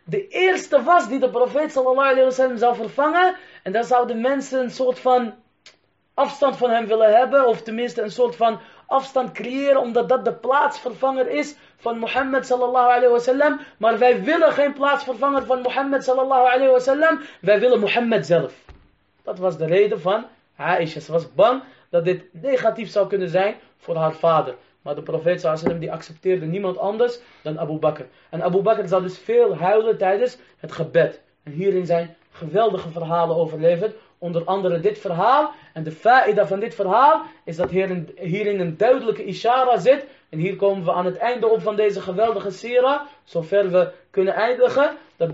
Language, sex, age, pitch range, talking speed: Dutch, male, 20-39, 180-255 Hz, 175 wpm